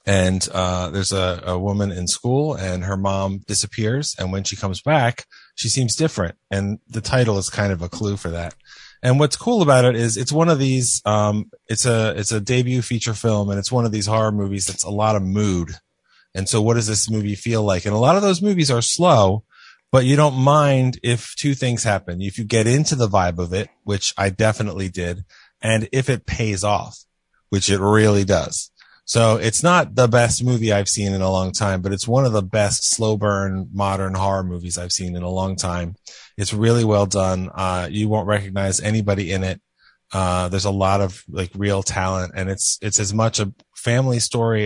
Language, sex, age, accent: English, male, 30-49, American